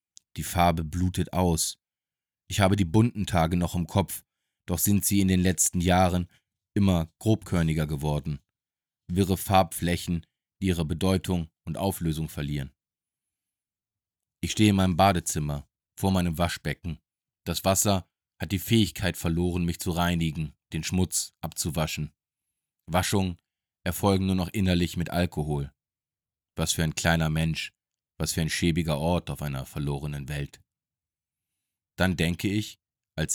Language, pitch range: German, 80-95 Hz